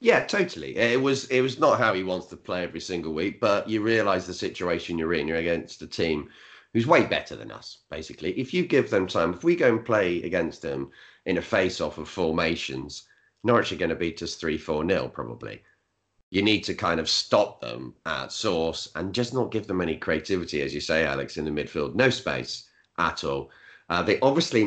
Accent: British